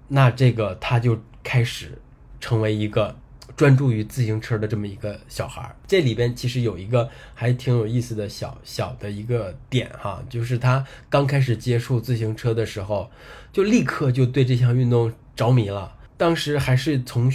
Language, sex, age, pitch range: Chinese, male, 20-39, 110-130 Hz